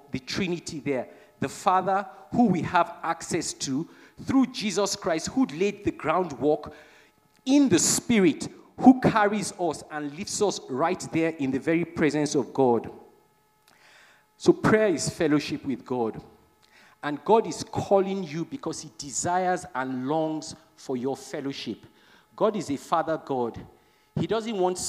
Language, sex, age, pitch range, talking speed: English, male, 50-69, 140-195 Hz, 145 wpm